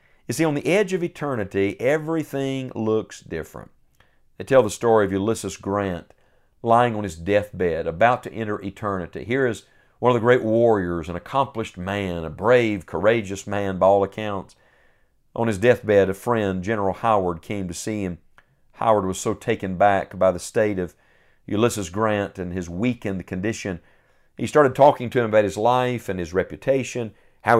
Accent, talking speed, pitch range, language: American, 175 wpm, 100-125 Hz, English